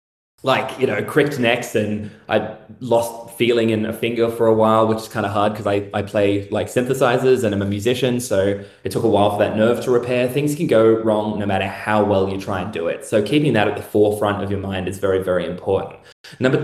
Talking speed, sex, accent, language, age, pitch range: 240 wpm, male, Australian, English, 20-39, 105-120 Hz